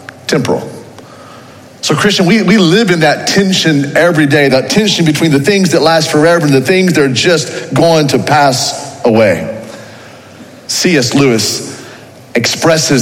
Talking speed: 145 wpm